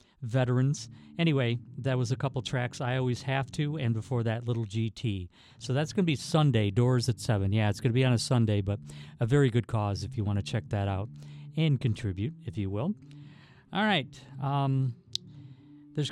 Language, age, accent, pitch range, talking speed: English, 40-59, American, 110-140 Hz, 200 wpm